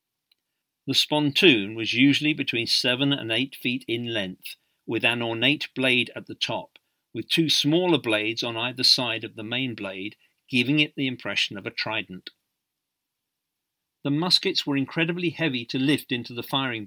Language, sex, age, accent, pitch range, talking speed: English, male, 50-69, British, 115-150 Hz, 165 wpm